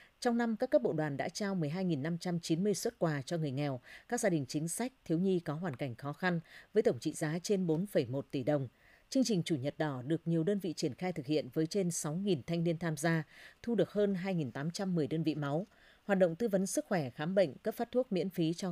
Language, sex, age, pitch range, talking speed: Vietnamese, female, 20-39, 155-195 Hz, 240 wpm